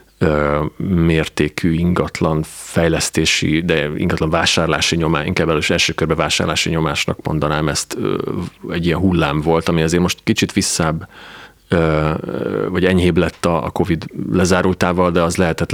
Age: 30-49